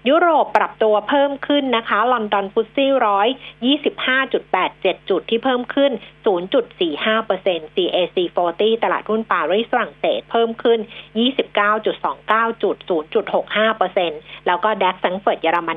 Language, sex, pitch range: Thai, female, 180-235 Hz